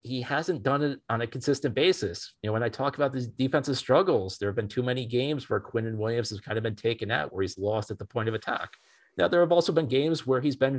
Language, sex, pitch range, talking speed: English, male, 110-145 Hz, 280 wpm